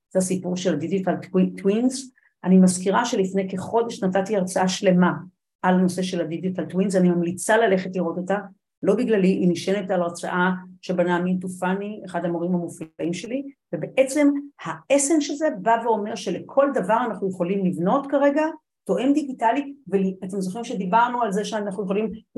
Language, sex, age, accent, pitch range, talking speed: Hebrew, female, 50-69, native, 180-225 Hz, 145 wpm